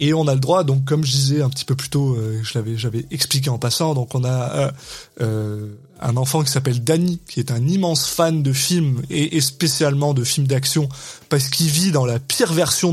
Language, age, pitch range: French, 20-39, 130-155 Hz